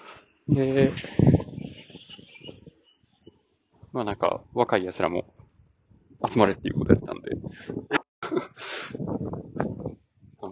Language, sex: Japanese, male